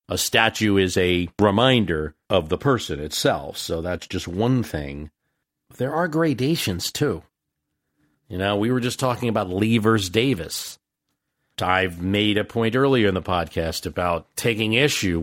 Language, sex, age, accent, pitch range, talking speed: English, male, 50-69, American, 95-125 Hz, 155 wpm